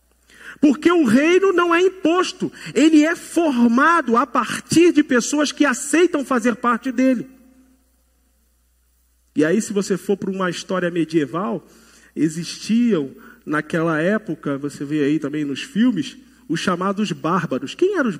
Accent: Brazilian